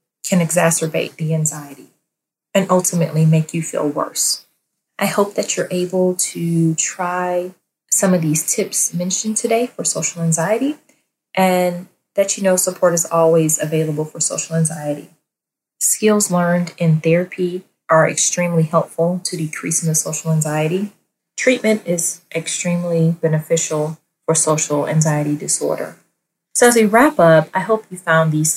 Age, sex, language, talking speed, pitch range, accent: 30-49, female, English, 140 wpm, 155-185 Hz, American